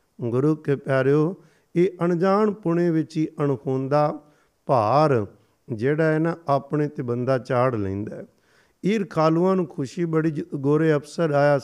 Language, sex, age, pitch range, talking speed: Punjabi, male, 50-69, 135-160 Hz, 135 wpm